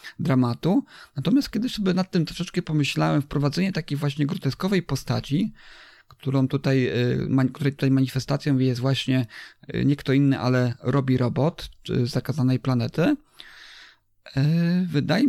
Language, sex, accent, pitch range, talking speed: English, male, Polish, 135-165 Hz, 115 wpm